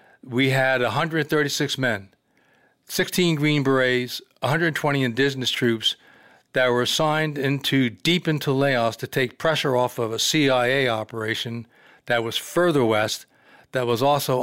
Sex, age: male, 60-79